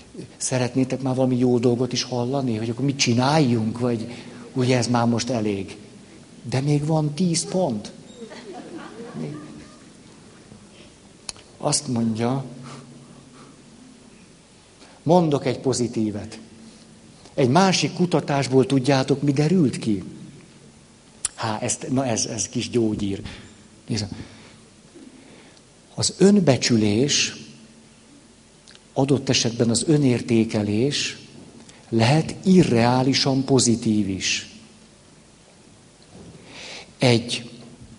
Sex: male